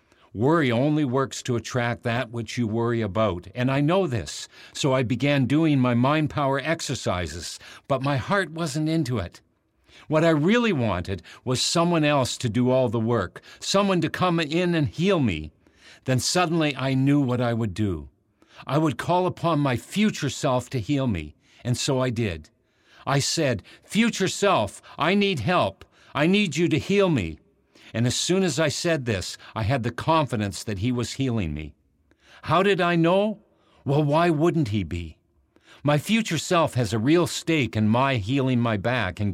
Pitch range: 115-160 Hz